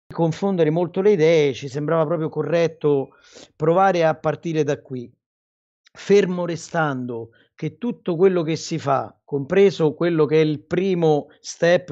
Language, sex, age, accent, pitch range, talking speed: Italian, male, 40-59, native, 145-175 Hz, 140 wpm